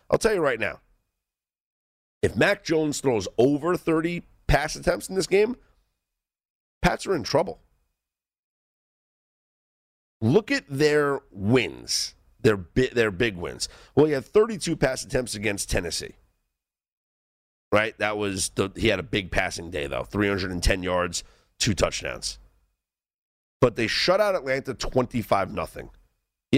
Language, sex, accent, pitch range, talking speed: English, male, American, 95-135 Hz, 130 wpm